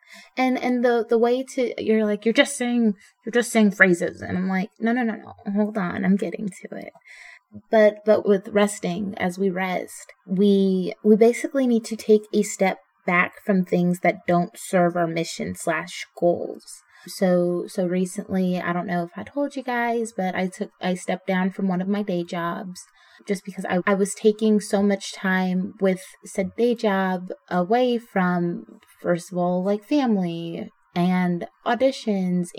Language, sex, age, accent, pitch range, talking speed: English, female, 20-39, American, 185-225 Hz, 180 wpm